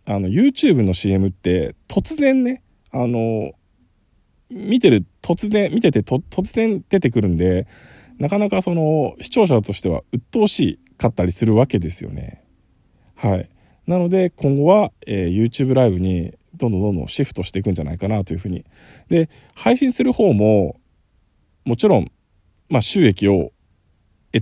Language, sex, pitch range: Japanese, male, 95-155 Hz